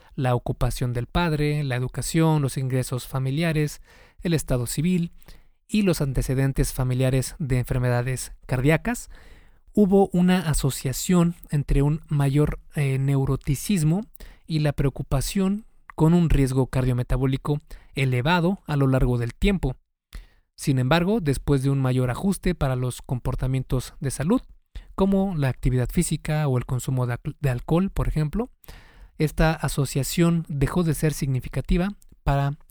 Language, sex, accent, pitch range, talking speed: Spanish, male, Mexican, 130-165 Hz, 130 wpm